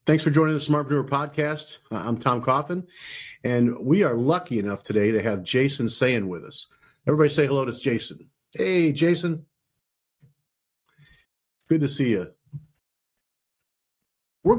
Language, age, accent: English, 40-59, American